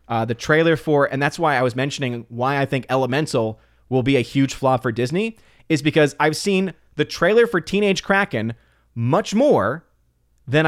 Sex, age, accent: male, 20-39, American